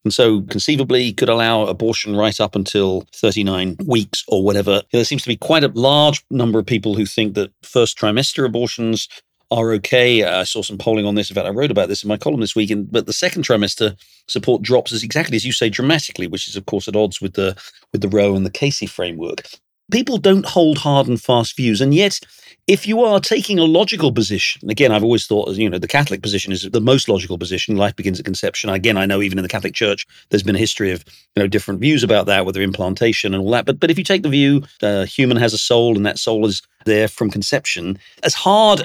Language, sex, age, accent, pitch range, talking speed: English, male, 40-59, British, 105-145 Hz, 245 wpm